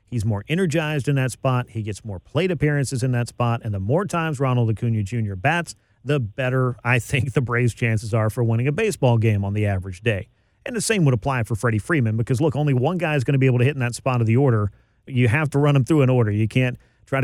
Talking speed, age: 265 wpm, 40-59